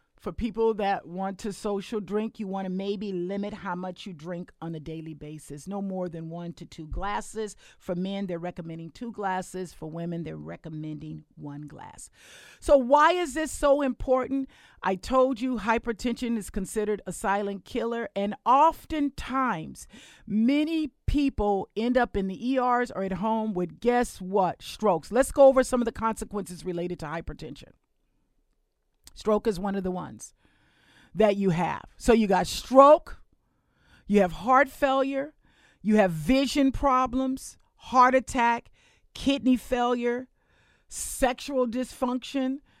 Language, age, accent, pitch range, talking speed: English, 50-69, American, 195-260 Hz, 150 wpm